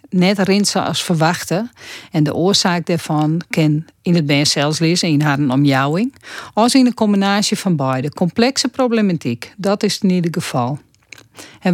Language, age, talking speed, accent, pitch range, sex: Dutch, 50-69, 165 wpm, Dutch, 150-200 Hz, female